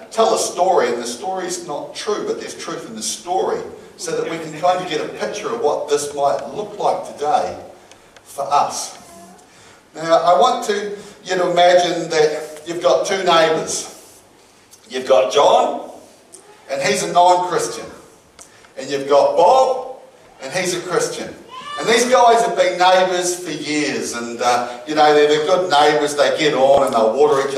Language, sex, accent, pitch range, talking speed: English, male, Australian, 135-185 Hz, 185 wpm